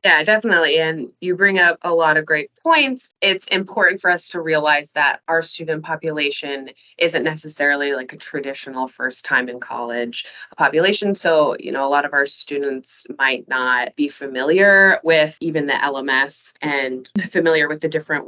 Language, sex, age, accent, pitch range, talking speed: English, female, 20-39, American, 140-175 Hz, 170 wpm